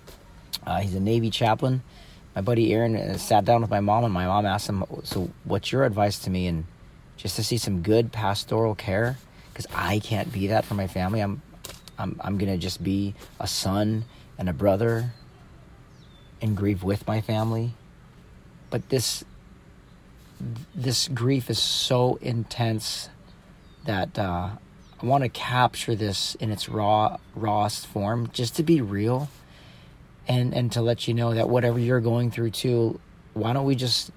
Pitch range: 105-130 Hz